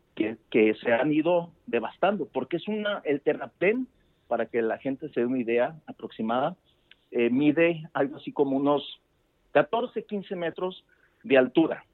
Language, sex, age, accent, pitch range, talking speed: Spanish, male, 50-69, Mexican, 110-145 Hz, 155 wpm